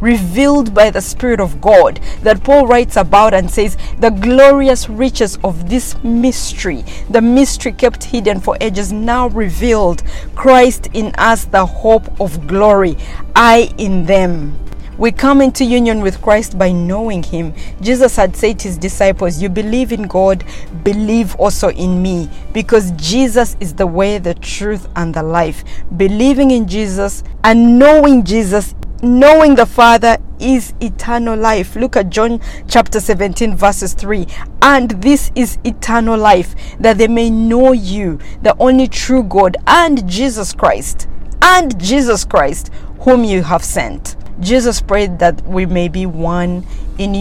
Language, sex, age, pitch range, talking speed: English, female, 40-59, 190-240 Hz, 155 wpm